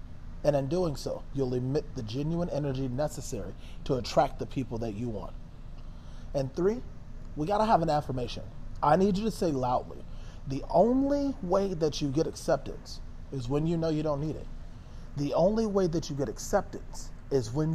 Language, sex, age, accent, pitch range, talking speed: English, male, 30-49, American, 125-160 Hz, 185 wpm